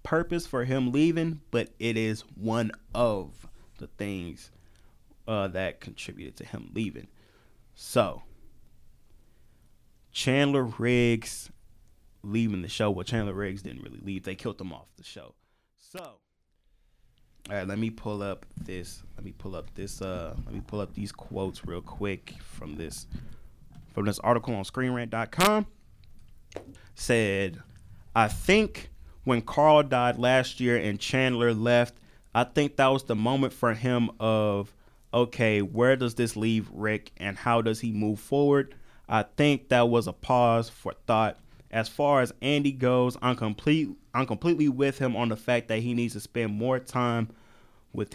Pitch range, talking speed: 105-130 Hz, 155 wpm